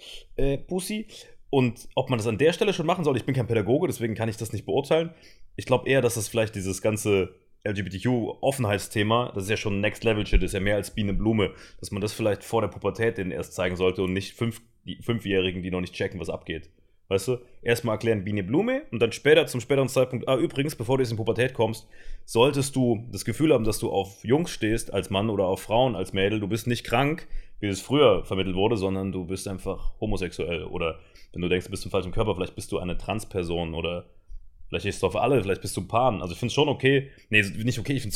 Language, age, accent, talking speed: German, 30-49, German, 240 wpm